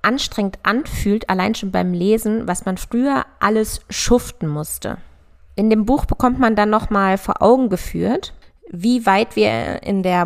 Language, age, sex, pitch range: German, 20-39, female, 170-210 Hz